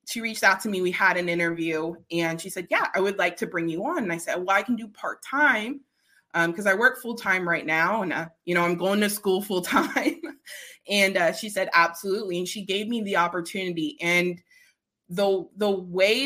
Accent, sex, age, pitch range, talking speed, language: American, female, 20-39, 170-220 Hz, 230 wpm, English